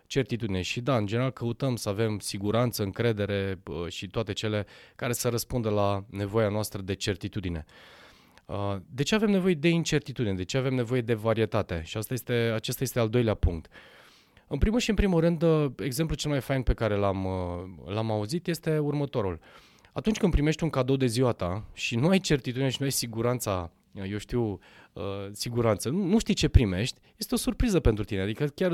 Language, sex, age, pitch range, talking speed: Romanian, male, 20-39, 100-135 Hz, 185 wpm